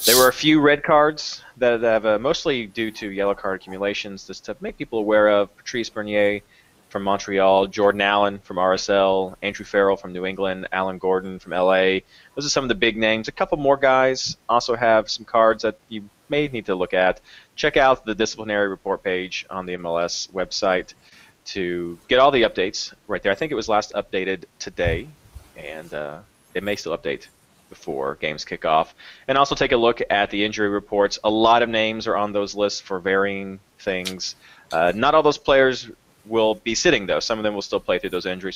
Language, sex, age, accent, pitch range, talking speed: English, male, 20-39, American, 100-120 Hz, 205 wpm